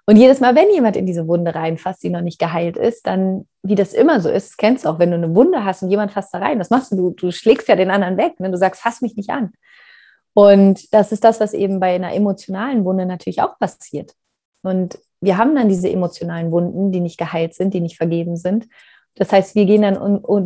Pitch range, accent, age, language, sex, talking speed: 180-215 Hz, German, 30-49, German, female, 250 wpm